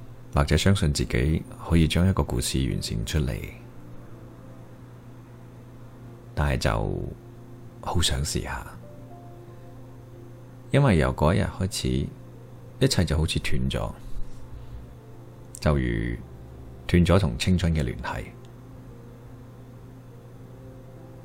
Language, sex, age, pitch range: Chinese, male, 30-49, 75-125 Hz